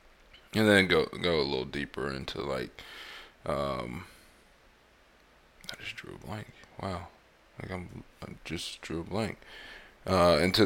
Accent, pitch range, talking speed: American, 80-95 Hz, 140 wpm